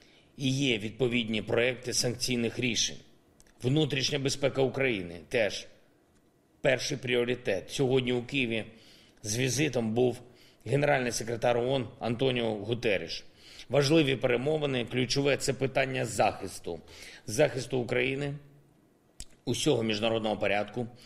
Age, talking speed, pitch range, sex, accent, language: 40-59, 105 wpm, 115-140 Hz, male, native, Ukrainian